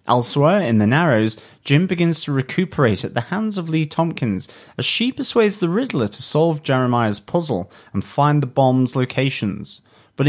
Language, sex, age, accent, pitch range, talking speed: English, male, 30-49, British, 110-160 Hz, 170 wpm